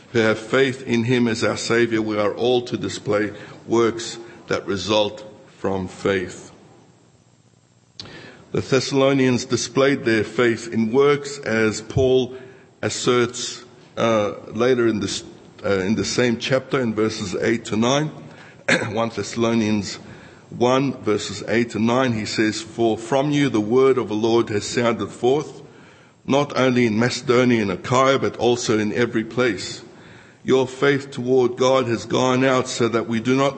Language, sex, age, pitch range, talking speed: English, male, 60-79, 110-130 Hz, 150 wpm